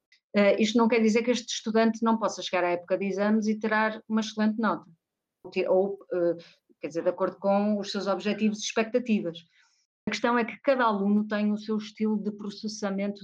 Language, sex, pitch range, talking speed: Portuguese, female, 185-215 Hz, 190 wpm